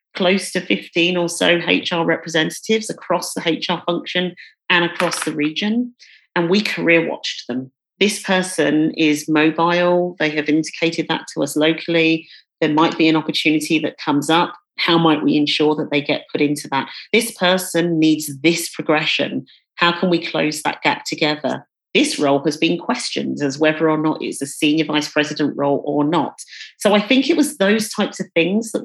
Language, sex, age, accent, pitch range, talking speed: English, female, 40-59, British, 155-195 Hz, 185 wpm